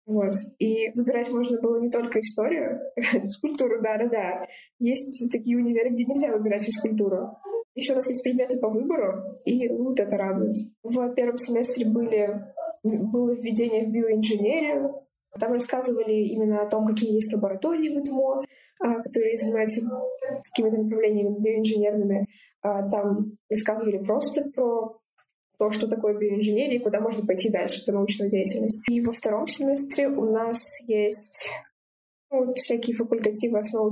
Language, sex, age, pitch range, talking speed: Russian, female, 20-39, 210-250 Hz, 140 wpm